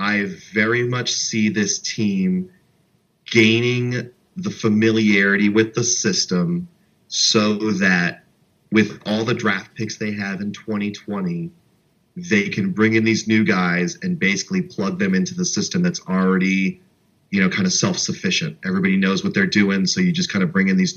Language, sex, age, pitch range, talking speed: English, male, 30-49, 110-185 Hz, 165 wpm